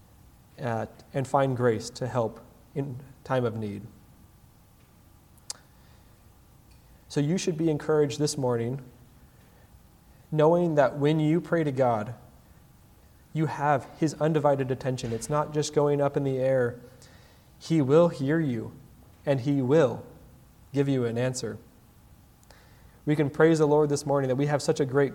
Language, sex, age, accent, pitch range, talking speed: English, male, 30-49, American, 120-145 Hz, 145 wpm